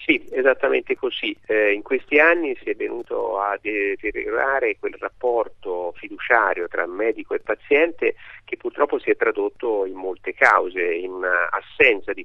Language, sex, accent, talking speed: Italian, male, native, 145 wpm